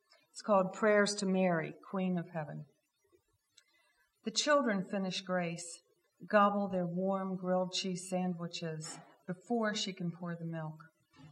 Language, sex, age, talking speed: English, female, 50-69, 125 wpm